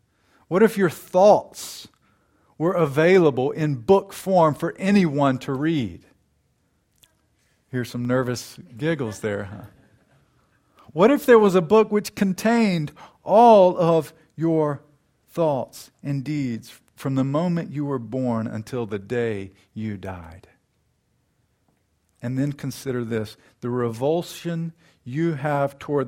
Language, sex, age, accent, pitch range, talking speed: English, male, 50-69, American, 110-145 Hz, 120 wpm